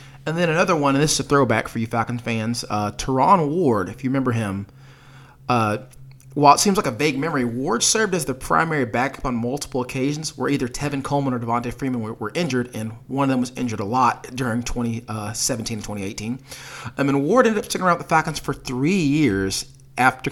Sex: male